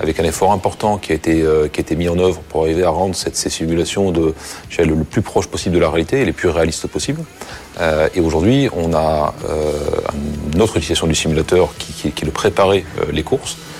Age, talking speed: 40-59, 225 wpm